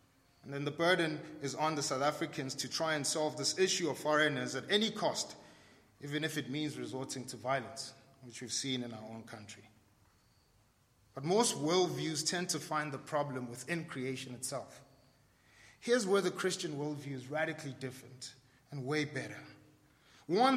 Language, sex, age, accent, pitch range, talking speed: English, male, 30-49, South African, 135-210 Hz, 165 wpm